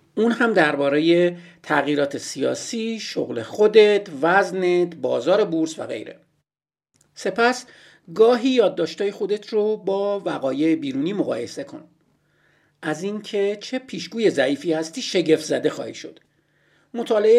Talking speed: 115 wpm